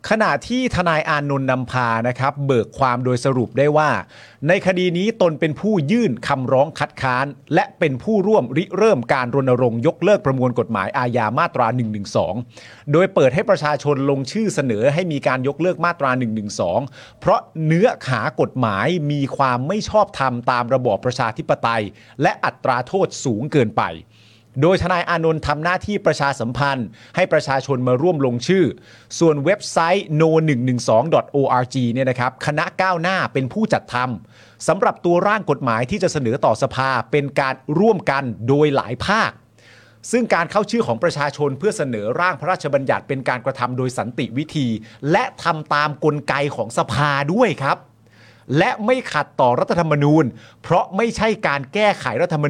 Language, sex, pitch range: Thai, male, 125-175 Hz